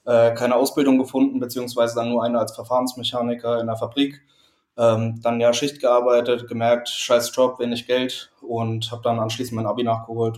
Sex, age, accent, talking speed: male, 20-39, German, 170 wpm